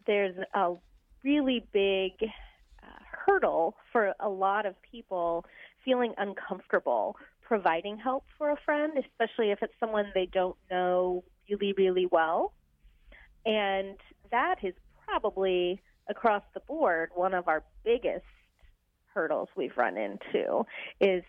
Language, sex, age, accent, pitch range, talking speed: English, female, 30-49, American, 180-235 Hz, 125 wpm